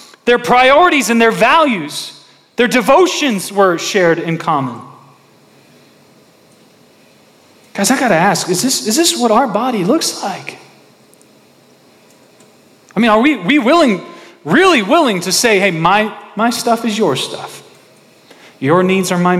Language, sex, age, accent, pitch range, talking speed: English, male, 40-59, American, 140-225 Hz, 140 wpm